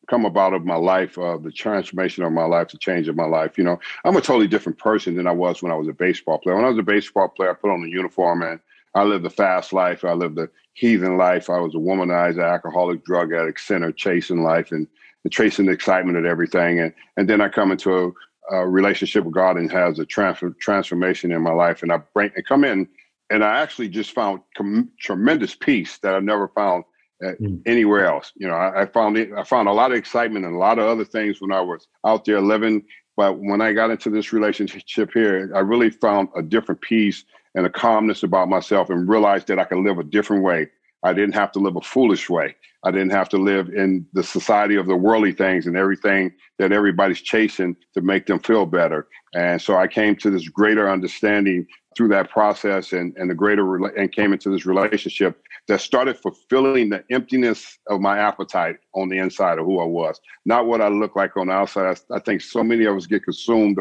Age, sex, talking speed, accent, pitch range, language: 50-69, male, 230 wpm, American, 90-105 Hz, English